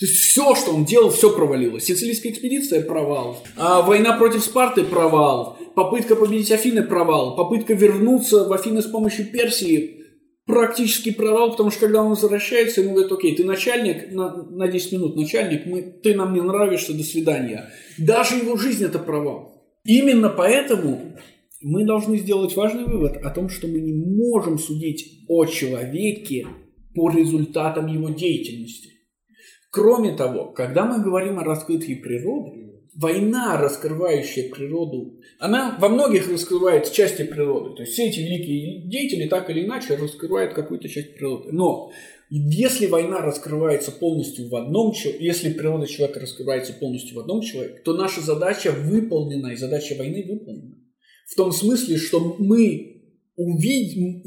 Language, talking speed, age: Russian, 150 wpm, 20-39